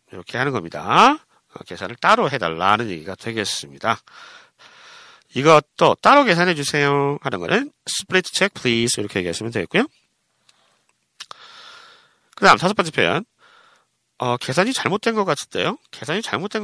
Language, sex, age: Korean, male, 40-59